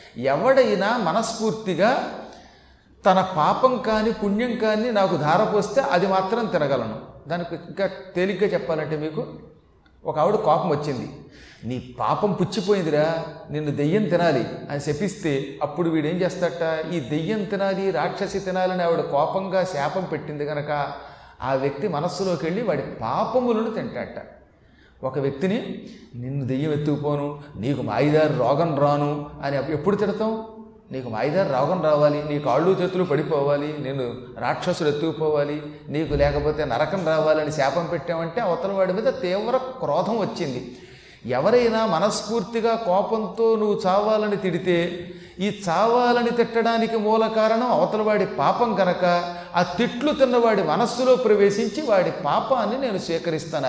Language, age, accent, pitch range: Telugu, 30-49, native, 150-215 Hz